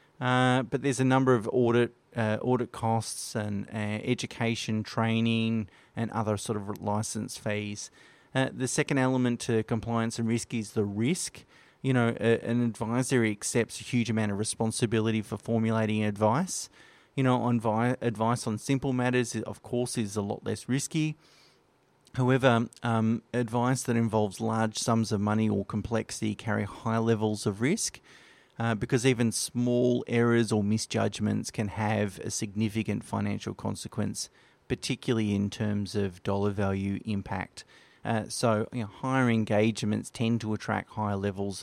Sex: male